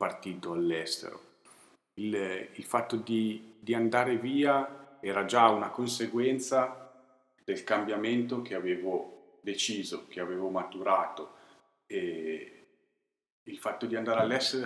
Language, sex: Italian, male